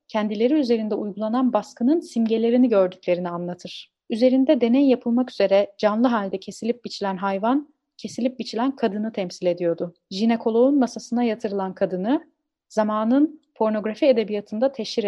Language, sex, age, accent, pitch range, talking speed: Turkish, female, 30-49, native, 200-255 Hz, 115 wpm